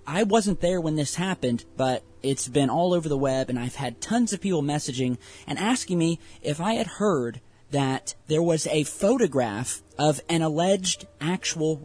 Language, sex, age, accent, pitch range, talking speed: English, male, 20-39, American, 125-170 Hz, 180 wpm